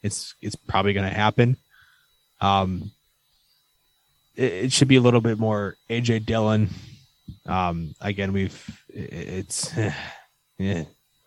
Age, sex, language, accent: 20-39, male, English, American